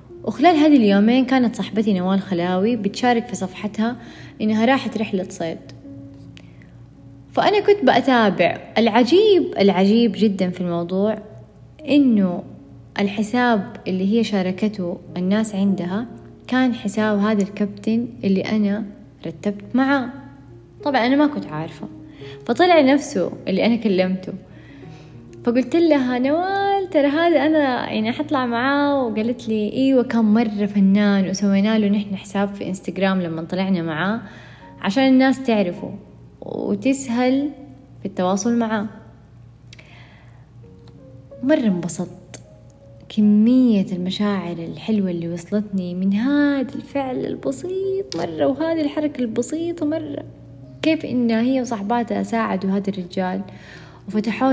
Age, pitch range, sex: 20-39, 185-250 Hz, female